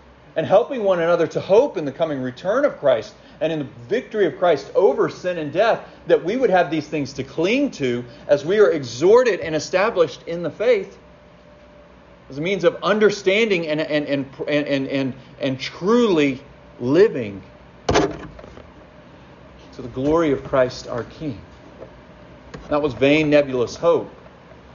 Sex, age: male, 40-59